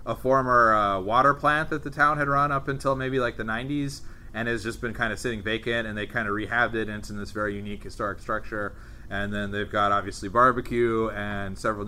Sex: male